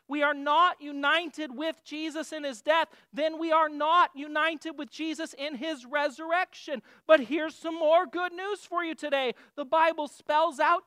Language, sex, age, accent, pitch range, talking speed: English, male, 40-59, American, 255-320 Hz, 175 wpm